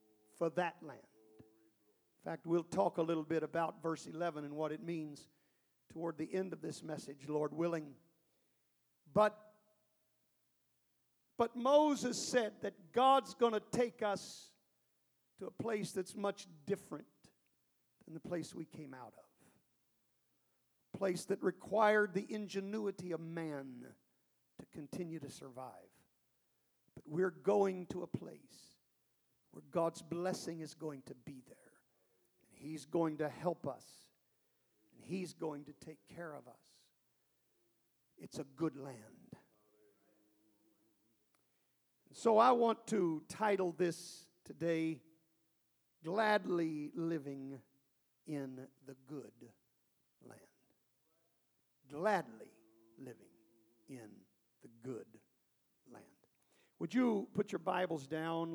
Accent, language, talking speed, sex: American, English, 120 wpm, male